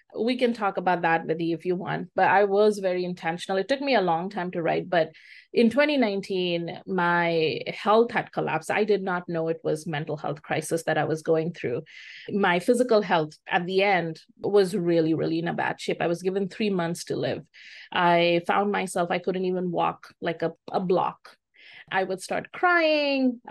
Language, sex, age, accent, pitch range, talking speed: English, female, 30-49, Indian, 170-205 Hz, 200 wpm